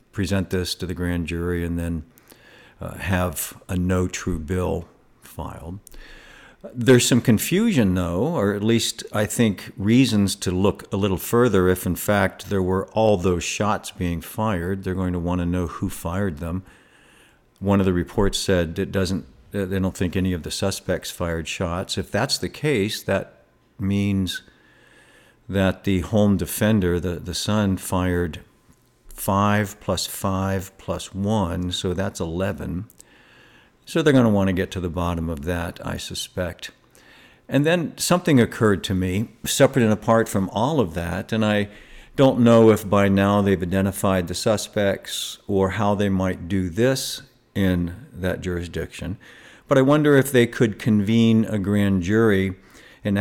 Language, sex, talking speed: English, male, 160 wpm